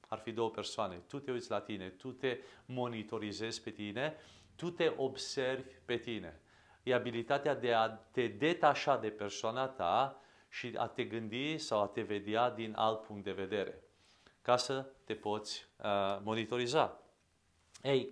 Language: English